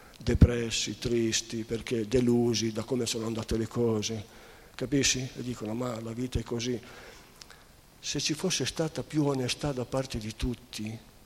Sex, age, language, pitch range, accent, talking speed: male, 50-69, Italian, 110-125 Hz, native, 150 wpm